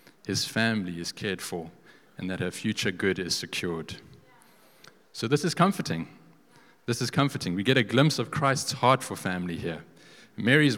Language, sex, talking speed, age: English, male, 165 wpm, 30-49